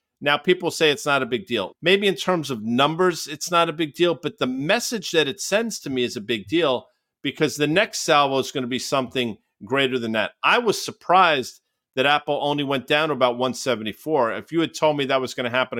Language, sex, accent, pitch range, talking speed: English, male, American, 130-160 Hz, 240 wpm